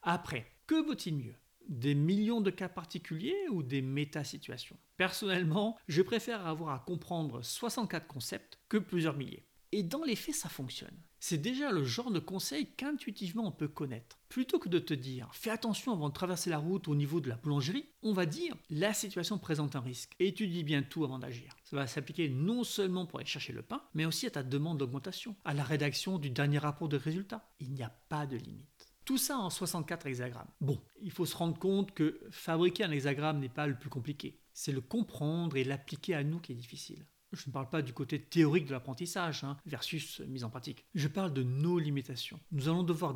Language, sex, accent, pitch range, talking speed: French, male, French, 140-185 Hz, 210 wpm